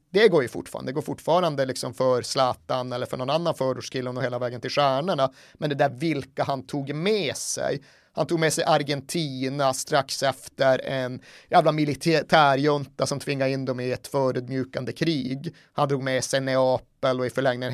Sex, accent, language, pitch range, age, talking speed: male, native, Swedish, 130-150 Hz, 30-49, 185 wpm